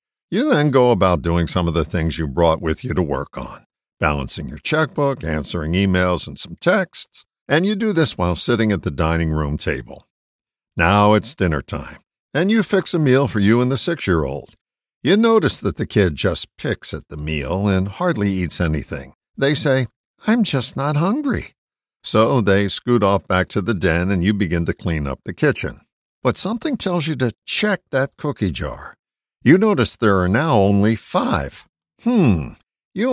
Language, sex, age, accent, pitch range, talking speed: English, male, 60-79, American, 85-145 Hz, 185 wpm